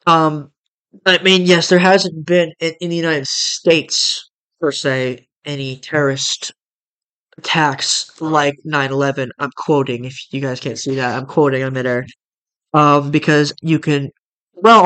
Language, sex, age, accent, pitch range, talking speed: English, male, 20-39, American, 135-155 Hz, 145 wpm